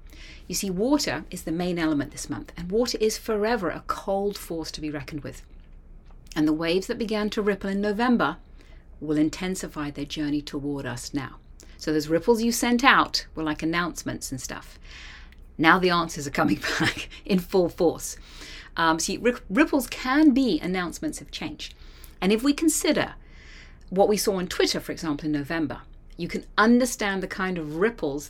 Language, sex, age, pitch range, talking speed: English, female, 40-59, 145-200 Hz, 180 wpm